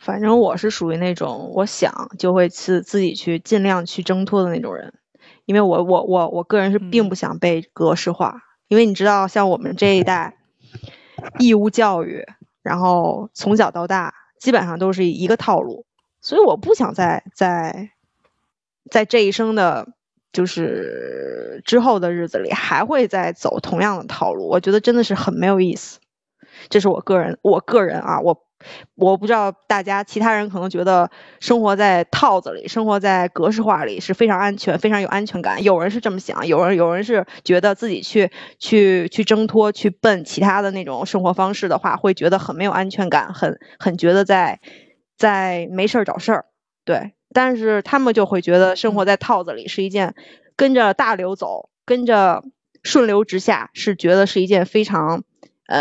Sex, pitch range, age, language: female, 185-220 Hz, 20-39, Chinese